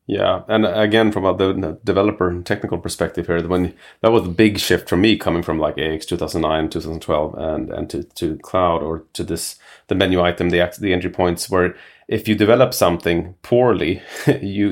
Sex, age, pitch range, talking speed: male, 30-49, 90-105 Hz, 190 wpm